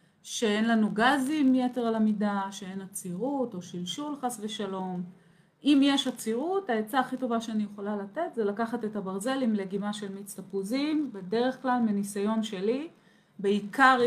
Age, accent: 30-49, native